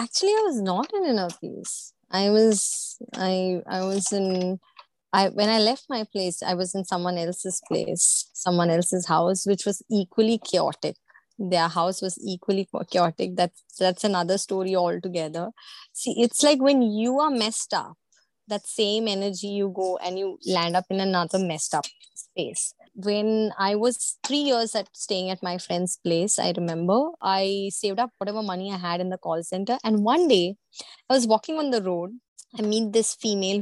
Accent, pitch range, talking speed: Indian, 185-280 Hz, 180 wpm